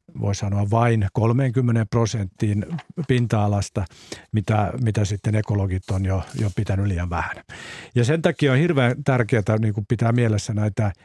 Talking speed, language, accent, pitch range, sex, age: 145 wpm, Finnish, native, 105-135 Hz, male, 50-69